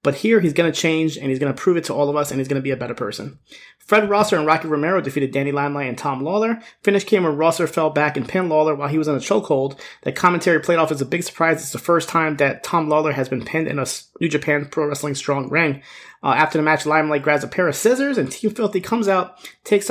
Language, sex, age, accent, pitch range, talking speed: English, male, 30-49, American, 140-170 Hz, 275 wpm